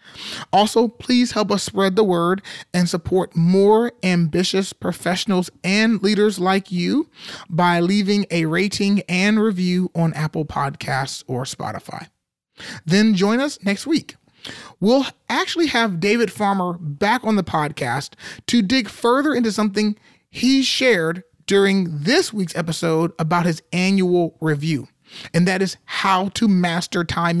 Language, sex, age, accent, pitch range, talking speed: English, male, 30-49, American, 175-225 Hz, 140 wpm